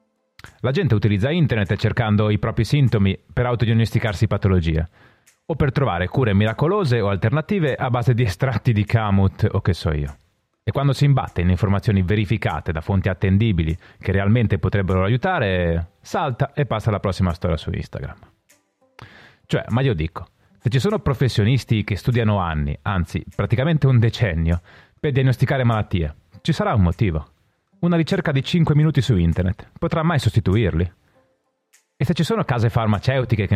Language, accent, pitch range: Italian, native, 95-130 Hz